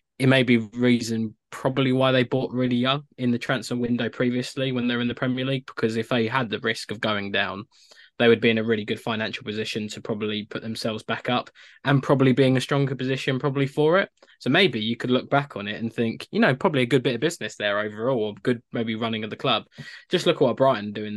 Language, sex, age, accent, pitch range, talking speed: English, male, 20-39, British, 110-125 Hz, 245 wpm